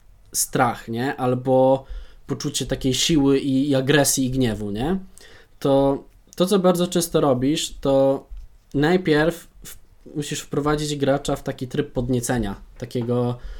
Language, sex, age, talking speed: Polish, male, 20-39, 130 wpm